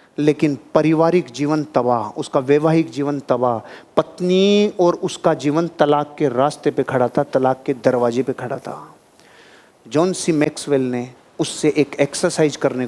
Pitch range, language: 140-185 Hz, Hindi